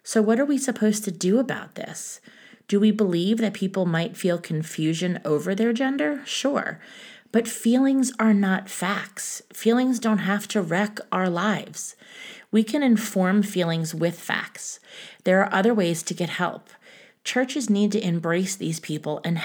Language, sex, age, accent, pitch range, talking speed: English, female, 30-49, American, 170-215 Hz, 165 wpm